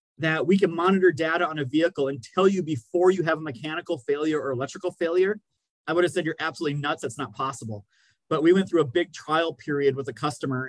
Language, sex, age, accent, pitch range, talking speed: English, male, 30-49, American, 145-180 Hz, 230 wpm